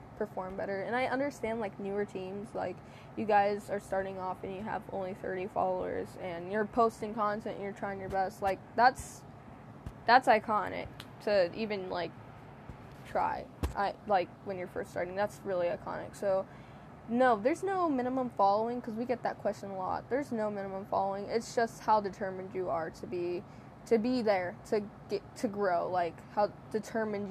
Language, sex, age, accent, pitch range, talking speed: English, female, 10-29, American, 185-220 Hz, 180 wpm